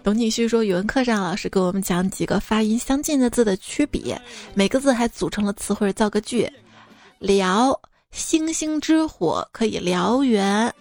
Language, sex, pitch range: Chinese, female, 200-245 Hz